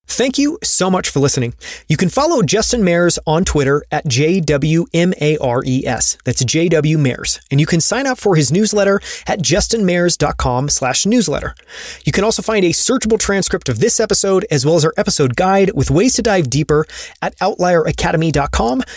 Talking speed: 170 wpm